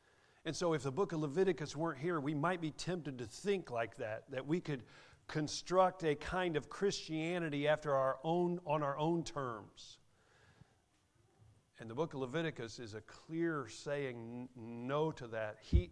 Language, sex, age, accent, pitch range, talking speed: English, male, 50-69, American, 120-165 Hz, 170 wpm